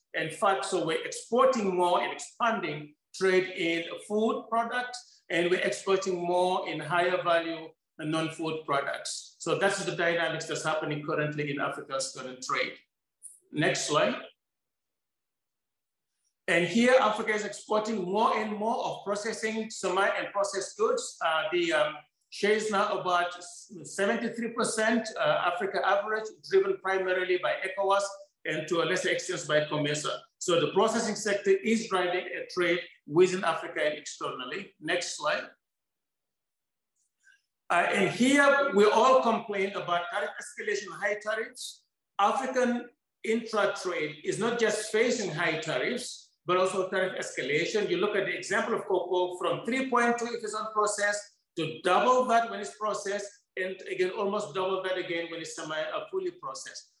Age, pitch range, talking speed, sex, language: 50-69, 175-225 Hz, 145 wpm, male, English